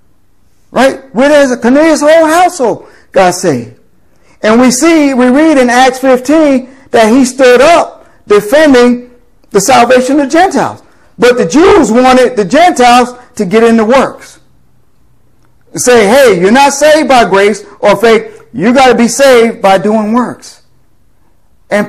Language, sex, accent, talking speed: English, male, American, 150 wpm